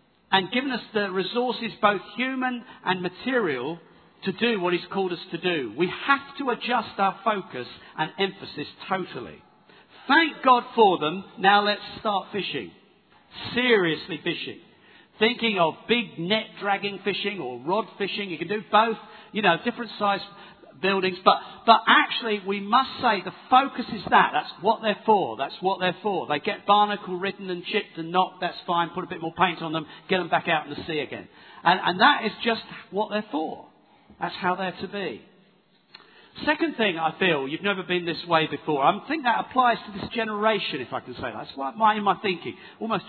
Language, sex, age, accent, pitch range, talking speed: English, male, 50-69, British, 180-230 Hz, 190 wpm